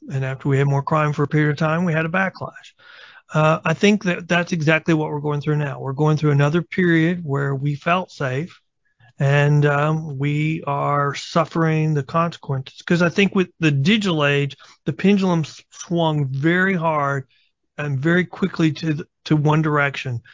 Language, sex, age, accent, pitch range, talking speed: English, male, 40-59, American, 140-170 Hz, 185 wpm